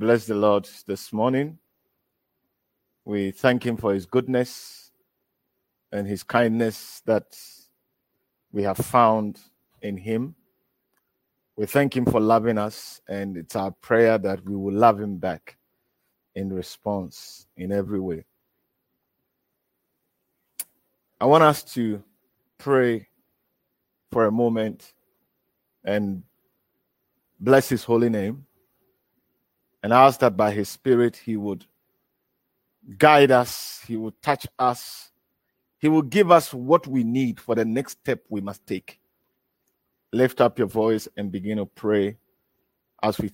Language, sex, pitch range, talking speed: English, male, 100-125 Hz, 125 wpm